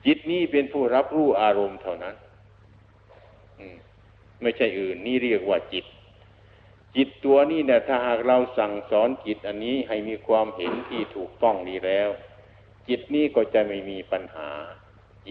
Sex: male